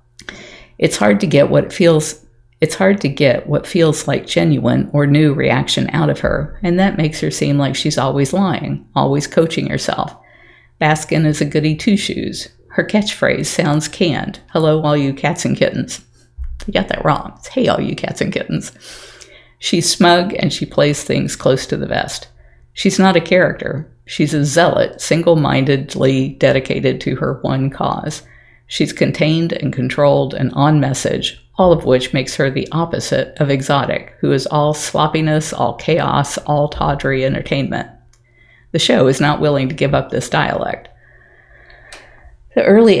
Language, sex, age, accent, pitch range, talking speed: English, female, 50-69, American, 135-165 Hz, 170 wpm